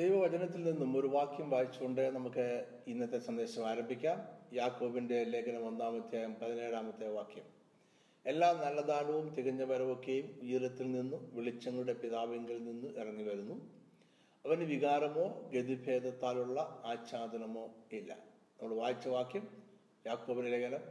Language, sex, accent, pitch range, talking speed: Malayalam, male, native, 120-165 Hz, 100 wpm